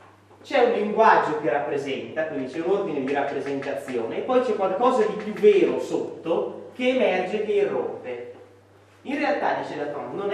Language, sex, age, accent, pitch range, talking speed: Italian, male, 30-49, native, 180-275 Hz, 170 wpm